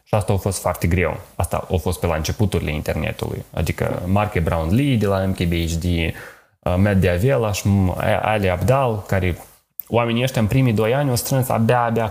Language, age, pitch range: Romanian, 20-39, 90-120 Hz